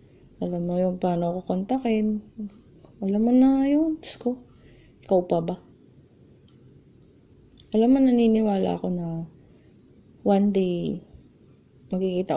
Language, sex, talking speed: Filipino, female, 100 wpm